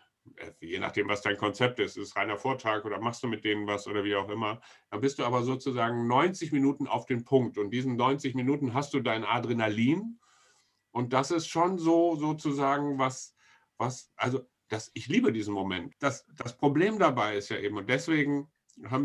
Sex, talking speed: male, 195 wpm